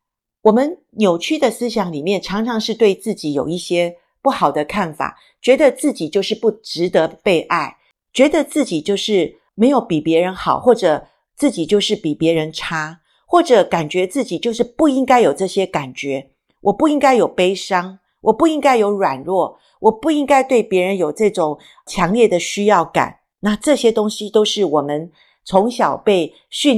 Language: Chinese